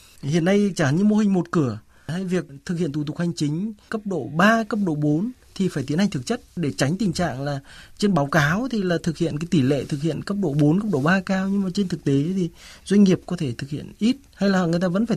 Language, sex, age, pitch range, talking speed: Vietnamese, male, 20-39, 150-185 Hz, 280 wpm